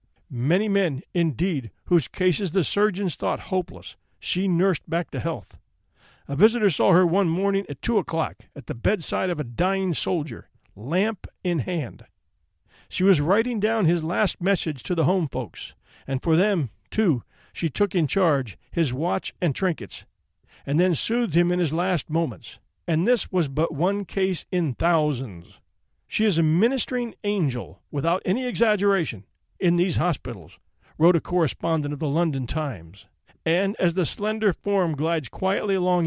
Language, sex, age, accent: English, male, 50-69, American